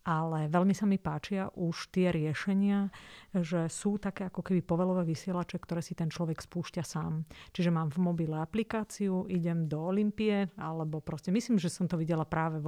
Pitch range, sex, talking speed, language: 160-185 Hz, female, 180 wpm, Slovak